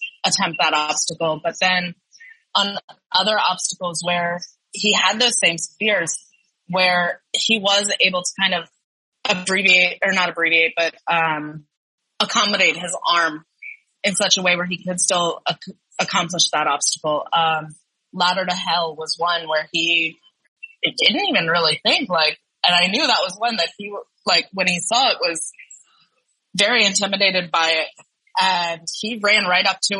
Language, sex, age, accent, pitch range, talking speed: English, female, 20-39, American, 170-200 Hz, 160 wpm